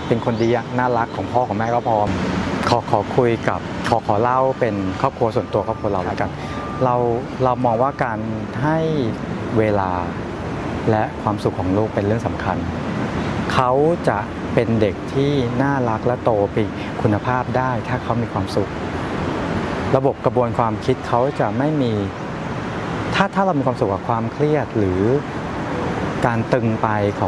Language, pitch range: Thai, 105-130 Hz